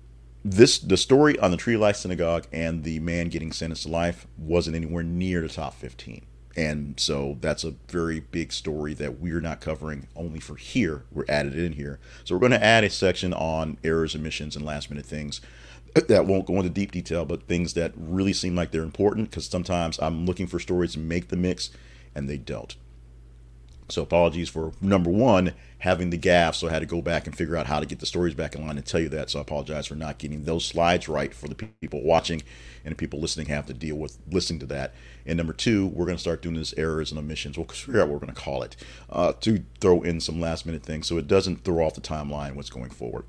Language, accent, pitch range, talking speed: English, American, 75-85 Hz, 240 wpm